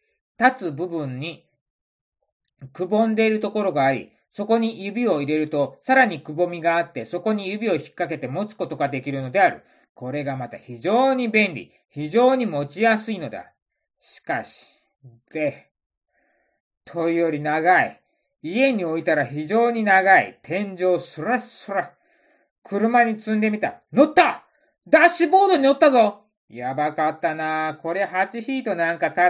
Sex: male